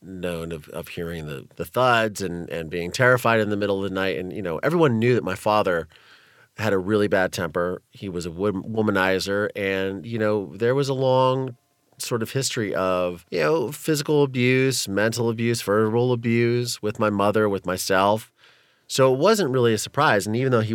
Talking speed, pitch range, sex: 195 wpm, 95-120 Hz, male